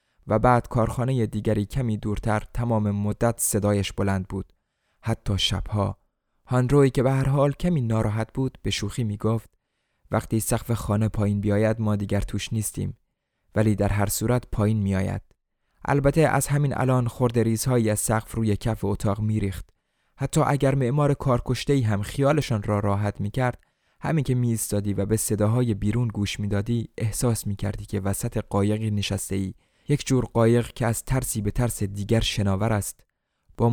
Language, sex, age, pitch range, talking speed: Persian, male, 20-39, 105-120 Hz, 155 wpm